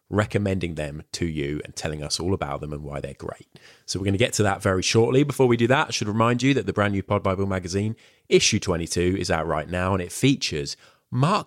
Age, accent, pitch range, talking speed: 30-49, British, 80-105 Hz, 250 wpm